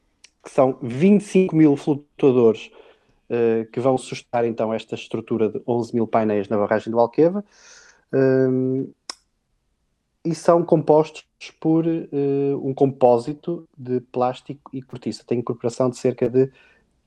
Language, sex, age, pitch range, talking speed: Portuguese, male, 20-39, 120-145 Hz, 135 wpm